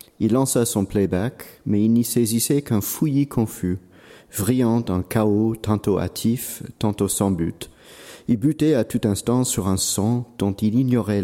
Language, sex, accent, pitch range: French, male, French, 95-120 Hz